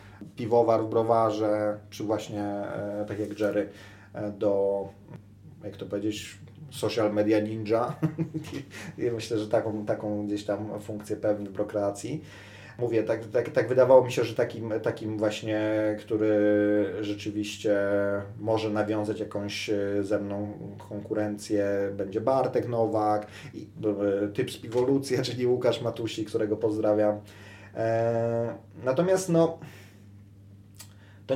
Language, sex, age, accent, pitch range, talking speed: Polish, male, 30-49, native, 100-115 Hz, 120 wpm